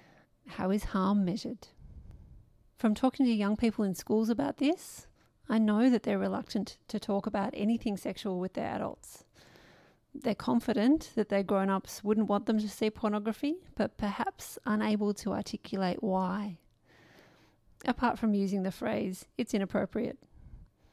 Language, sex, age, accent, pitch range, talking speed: English, female, 30-49, Australian, 195-235 Hz, 145 wpm